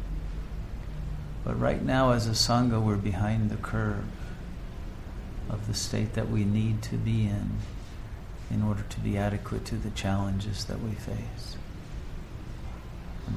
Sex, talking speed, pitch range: male, 140 wpm, 80-105 Hz